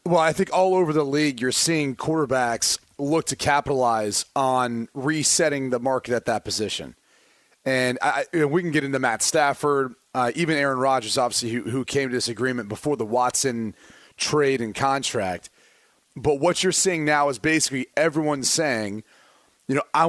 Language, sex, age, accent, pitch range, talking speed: English, male, 30-49, American, 120-150 Hz, 165 wpm